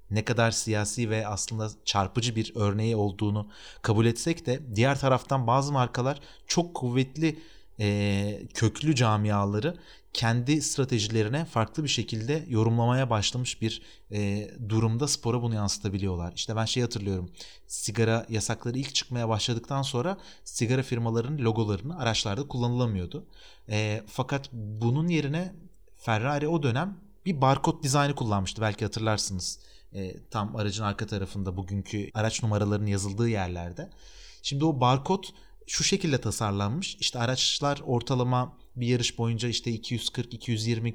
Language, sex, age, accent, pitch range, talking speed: Turkish, male, 30-49, native, 105-140 Hz, 120 wpm